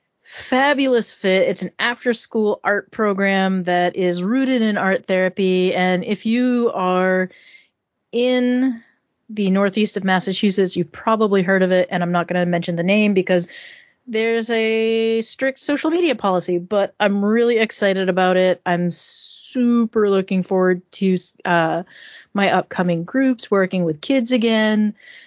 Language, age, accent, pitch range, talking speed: English, 30-49, American, 180-230 Hz, 145 wpm